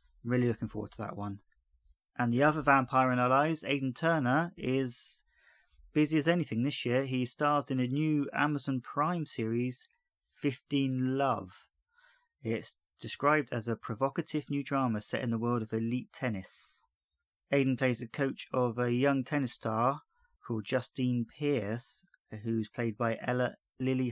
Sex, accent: male, British